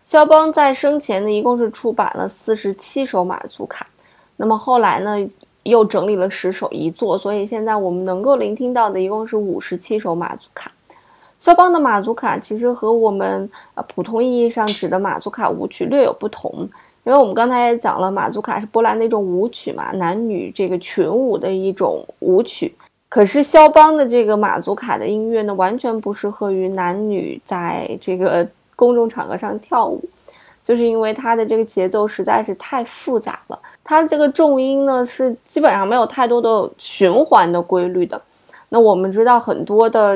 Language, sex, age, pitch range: Chinese, female, 20-39, 195-245 Hz